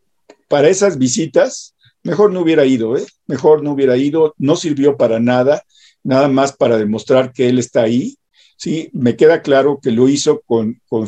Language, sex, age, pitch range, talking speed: Spanish, male, 50-69, 115-150 Hz, 180 wpm